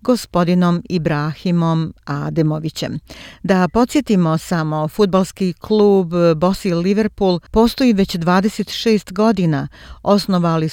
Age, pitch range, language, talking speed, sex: 40-59, 160-195 Hz, Croatian, 85 wpm, female